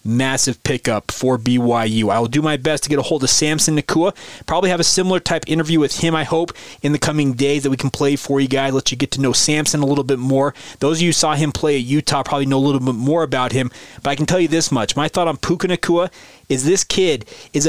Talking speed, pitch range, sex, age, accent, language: 270 wpm, 130-155 Hz, male, 30-49, American, English